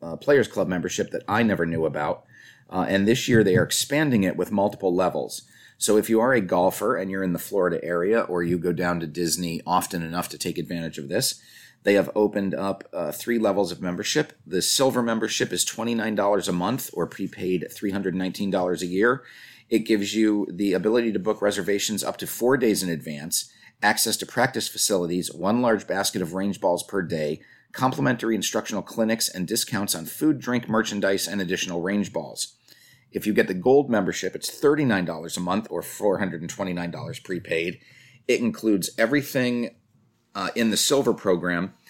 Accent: American